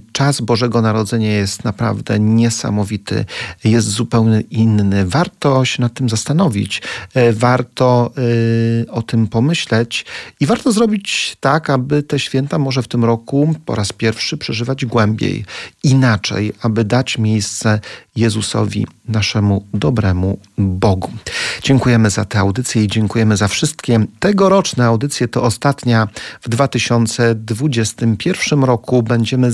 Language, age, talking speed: Polish, 40-59, 120 wpm